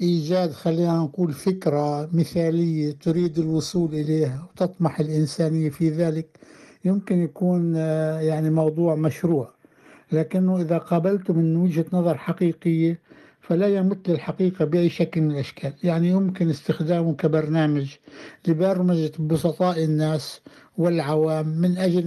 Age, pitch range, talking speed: 60-79, 155-175 Hz, 110 wpm